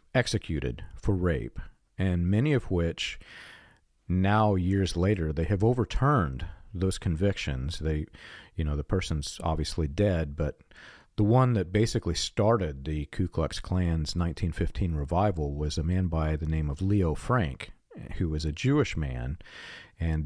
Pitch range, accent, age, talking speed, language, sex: 80-110 Hz, American, 40-59, 145 wpm, English, male